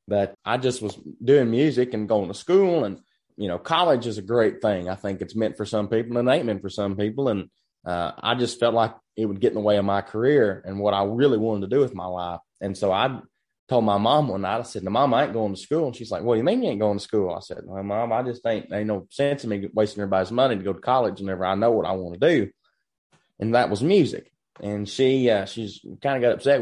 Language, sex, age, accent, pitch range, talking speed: English, male, 20-39, American, 100-130 Hz, 280 wpm